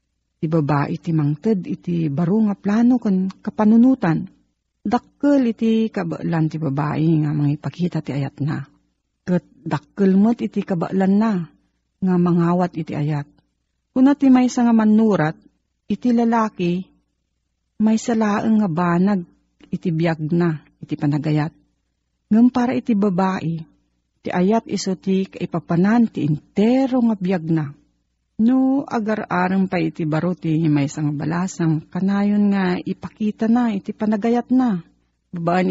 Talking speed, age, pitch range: 130 wpm, 40-59, 155-220 Hz